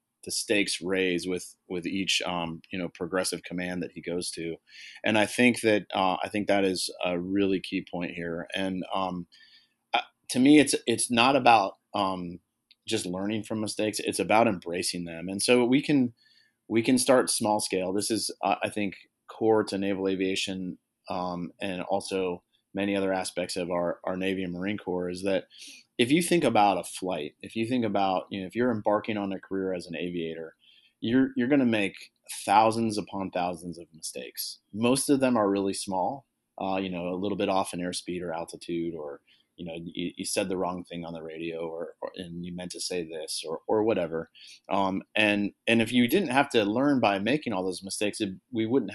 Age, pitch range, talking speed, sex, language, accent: 30-49, 90-105 Hz, 205 wpm, male, English, American